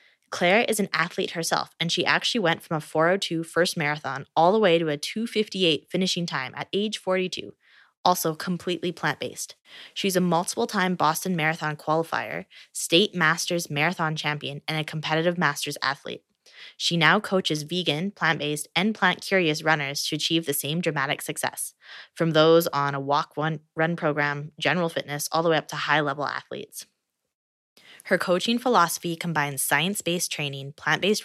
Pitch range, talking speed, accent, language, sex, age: 150-180 Hz, 150 wpm, American, English, female, 20-39